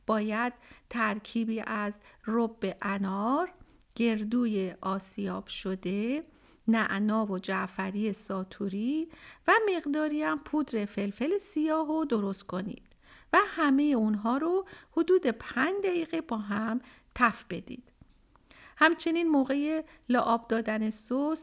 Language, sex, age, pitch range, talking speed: Persian, female, 50-69, 215-300 Hz, 105 wpm